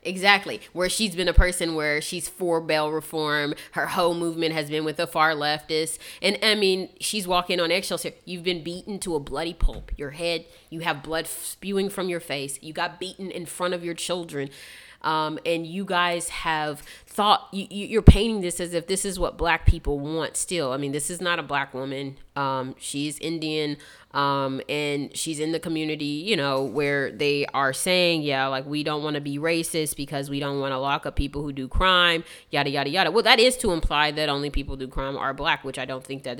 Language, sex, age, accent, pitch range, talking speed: English, female, 20-39, American, 145-180 Hz, 220 wpm